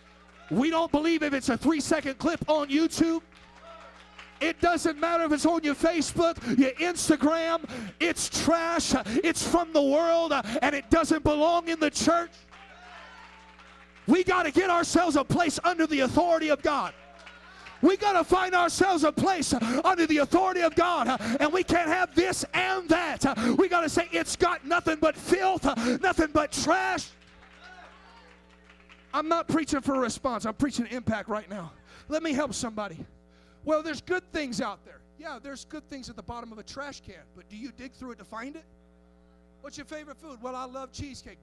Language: English